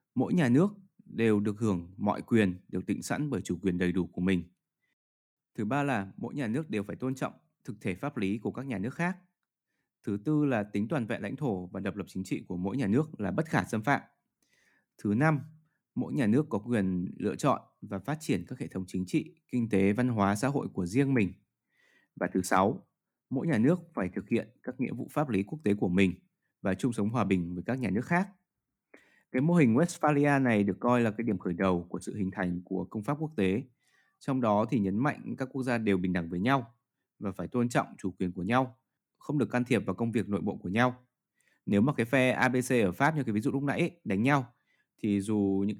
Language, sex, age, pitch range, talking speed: Vietnamese, male, 20-39, 100-140 Hz, 240 wpm